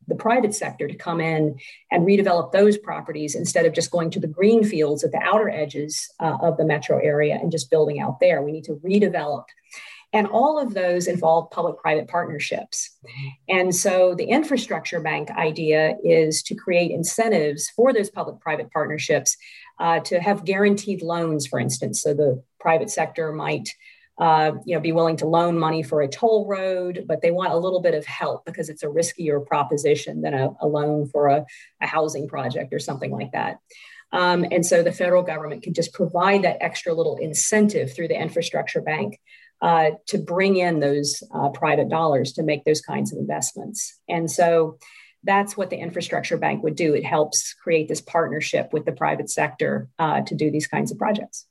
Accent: American